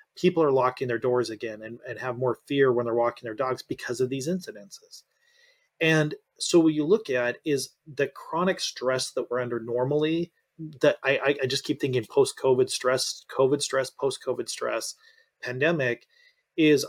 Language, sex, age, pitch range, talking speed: English, male, 30-49, 120-165 Hz, 170 wpm